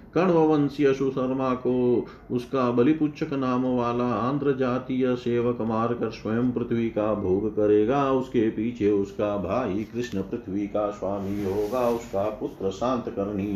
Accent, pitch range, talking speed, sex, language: native, 100-120 Hz, 130 wpm, male, Hindi